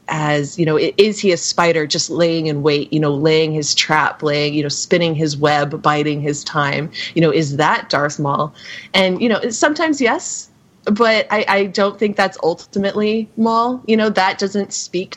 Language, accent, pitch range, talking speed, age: English, American, 160-200 Hz, 195 wpm, 30-49